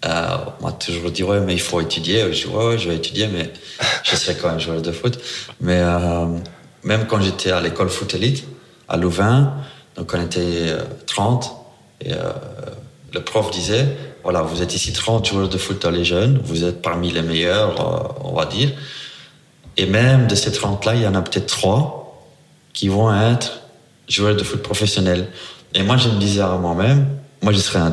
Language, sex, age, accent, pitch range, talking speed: French, male, 30-49, French, 85-110 Hz, 210 wpm